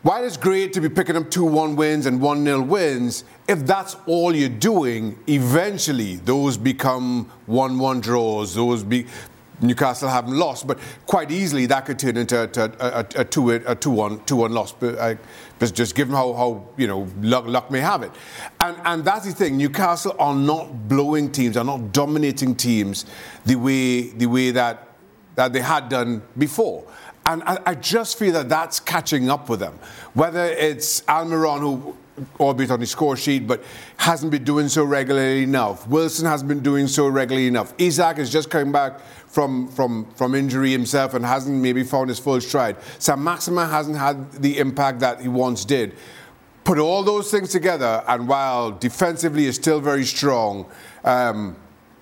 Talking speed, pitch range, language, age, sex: 175 wpm, 120-155 Hz, English, 50-69, male